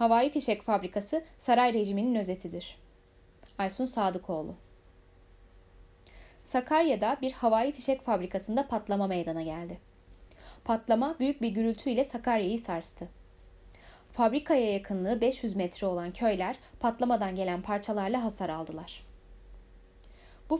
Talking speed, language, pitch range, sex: 100 wpm, Turkish, 175-250 Hz, female